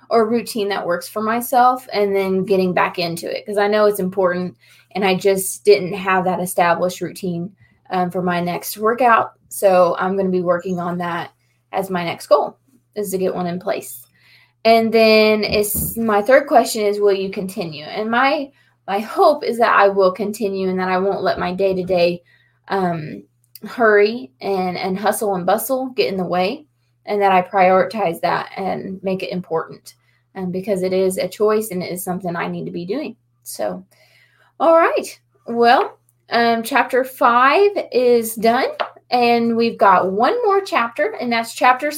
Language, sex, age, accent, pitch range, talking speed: English, female, 20-39, American, 185-235 Hz, 180 wpm